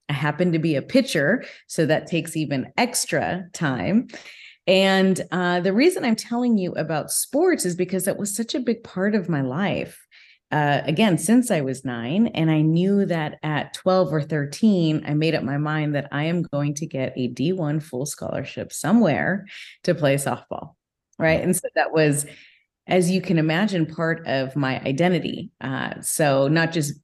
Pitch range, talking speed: 145-185 Hz, 180 wpm